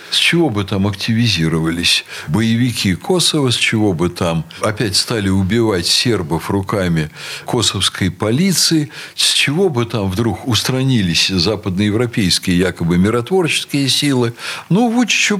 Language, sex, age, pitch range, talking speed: Russian, male, 60-79, 95-140 Hz, 115 wpm